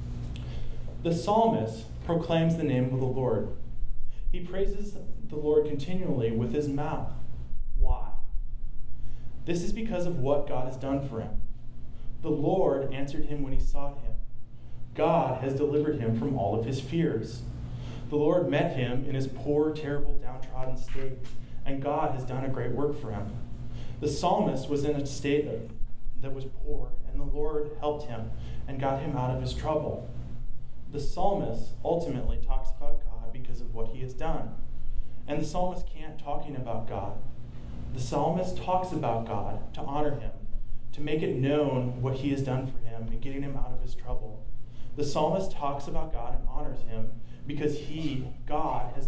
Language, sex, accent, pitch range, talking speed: English, male, American, 120-150 Hz, 170 wpm